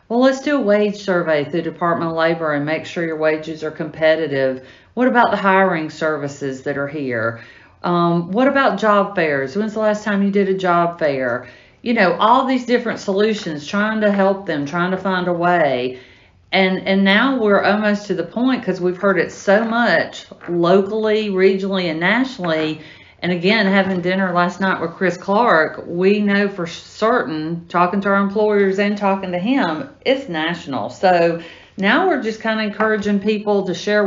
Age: 50-69